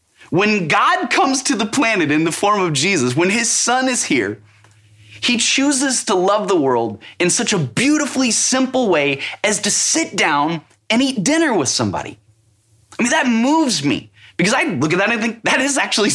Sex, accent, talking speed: male, American, 195 wpm